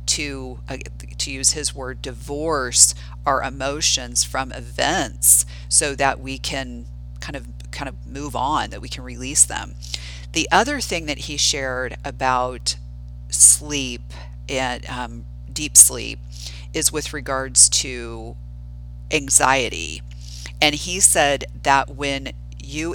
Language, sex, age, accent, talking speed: English, female, 40-59, American, 130 wpm